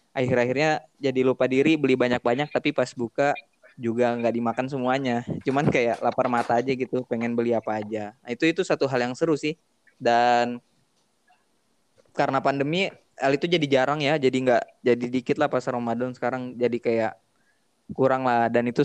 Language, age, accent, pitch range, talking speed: Indonesian, 20-39, native, 120-140 Hz, 170 wpm